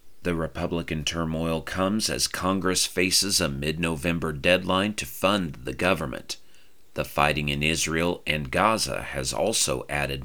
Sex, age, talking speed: male, 40-59, 135 wpm